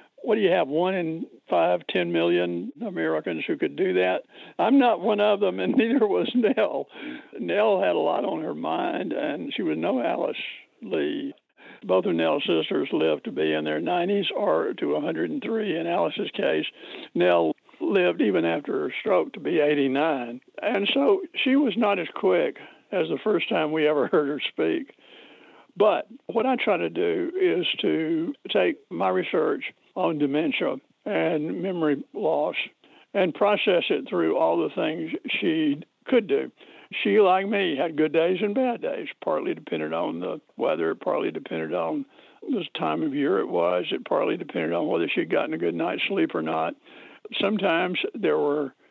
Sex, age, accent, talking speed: male, 60-79, American, 175 wpm